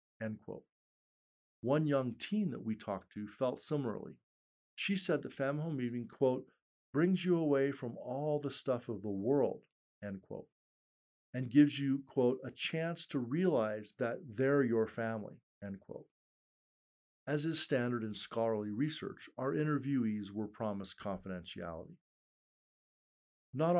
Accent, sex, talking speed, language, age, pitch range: American, male, 140 wpm, English, 50-69, 110-140 Hz